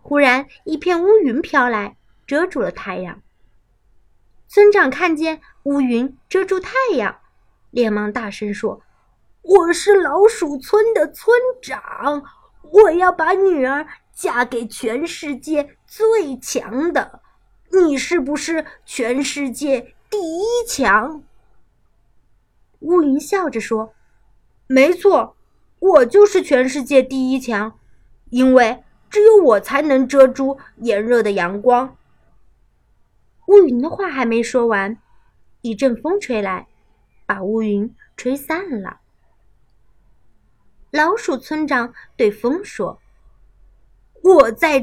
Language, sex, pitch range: Chinese, female, 240-350 Hz